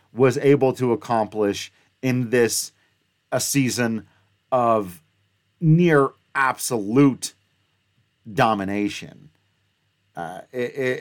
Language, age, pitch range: English, 40-59, 100-140 Hz